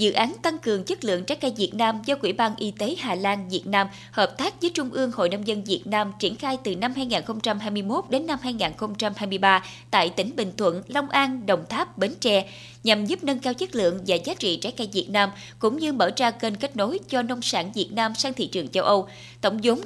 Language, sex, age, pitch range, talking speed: Vietnamese, female, 20-39, 190-250 Hz, 240 wpm